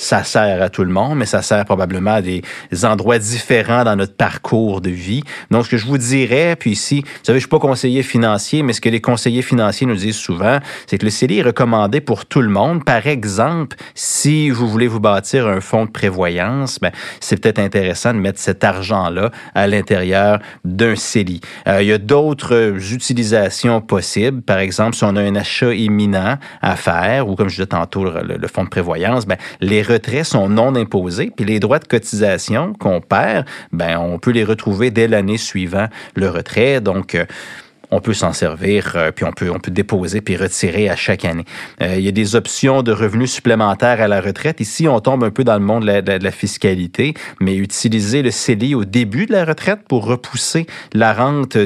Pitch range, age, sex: 95-120 Hz, 30-49, male